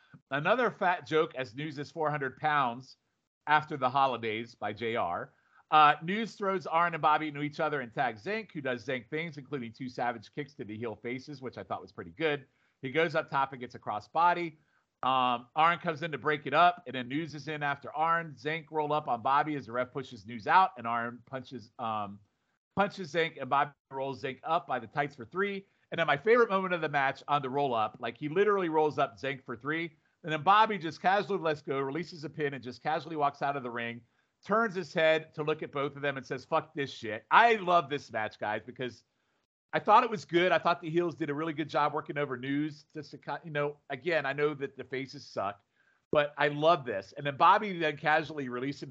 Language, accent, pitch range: English, American, 125-160 Hz